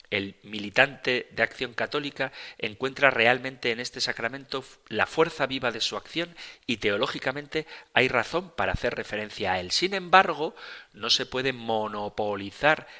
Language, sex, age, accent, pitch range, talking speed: Spanish, male, 40-59, Spanish, 110-135 Hz, 145 wpm